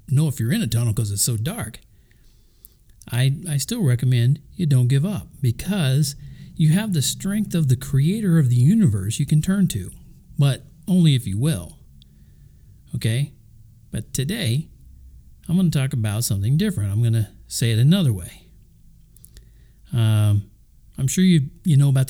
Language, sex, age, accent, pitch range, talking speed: English, male, 50-69, American, 110-145 Hz, 170 wpm